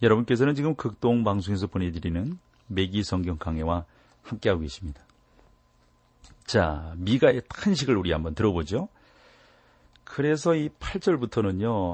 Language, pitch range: Korean, 90-115 Hz